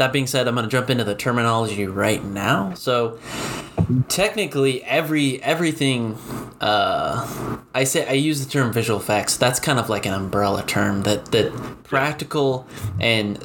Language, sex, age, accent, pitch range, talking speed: English, male, 20-39, American, 105-135 Hz, 155 wpm